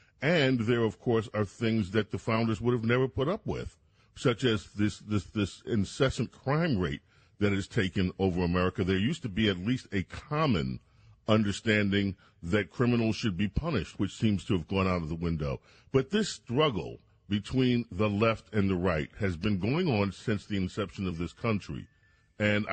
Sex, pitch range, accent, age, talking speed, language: male, 95-120 Hz, American, 40-59, 190 wpm, English